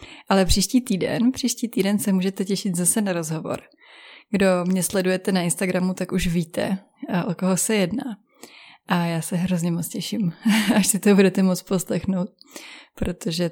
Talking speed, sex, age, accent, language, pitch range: 160 wpm, female, 20-39, native, Czech, 180-230 Hz